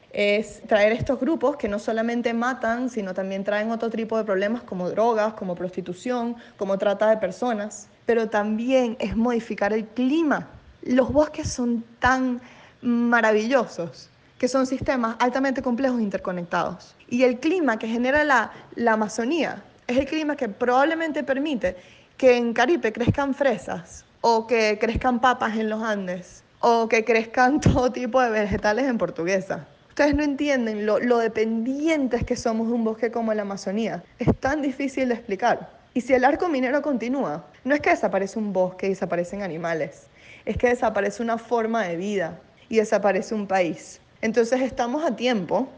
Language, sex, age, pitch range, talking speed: Spanish, female, 20-39, 210-265 Hz, 165 wpm